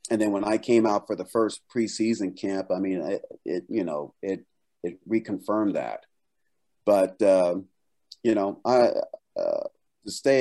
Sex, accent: male, American